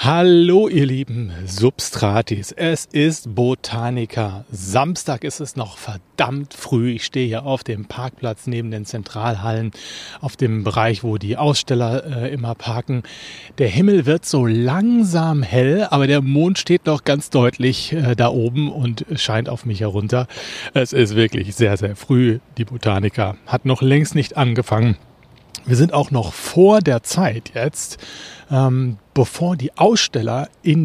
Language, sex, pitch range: German, male, 110-145 Hz